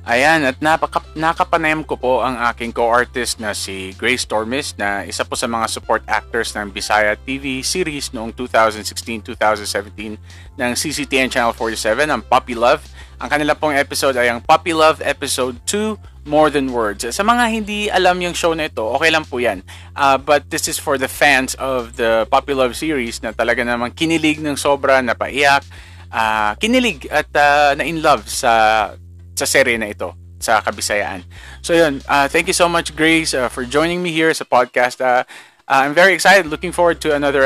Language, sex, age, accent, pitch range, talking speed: Filipino, male, 20-39, native, 105-145 Hz, 185 wpm